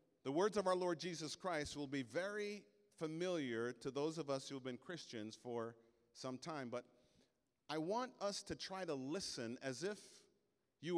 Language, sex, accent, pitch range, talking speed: English, male, American, 130-180 Hz, 180 wpm